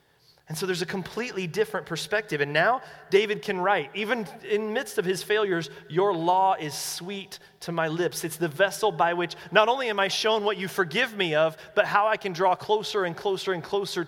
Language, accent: English, American